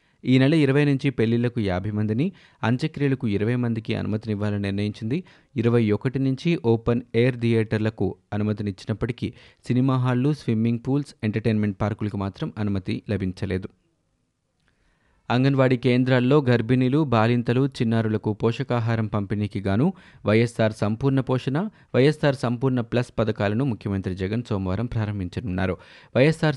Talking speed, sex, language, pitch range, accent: 110 wpm, male, Telugu, 105-125 Hz, native